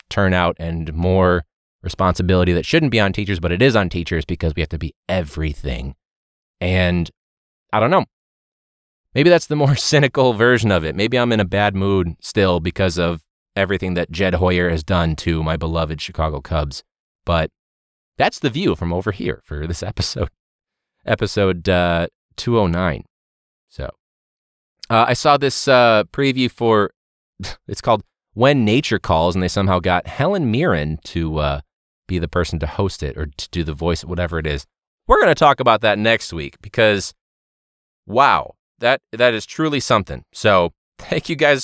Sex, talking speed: male, 170 wpm